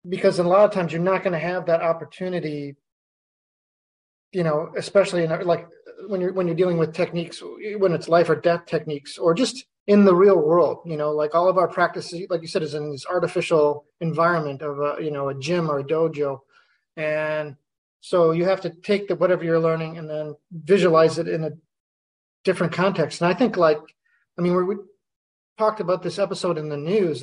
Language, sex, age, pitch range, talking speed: English, male, 30-49, 155-190 Hz, 205 wpm